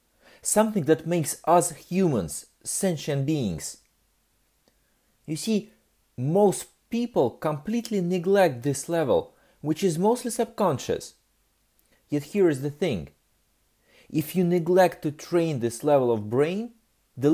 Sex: male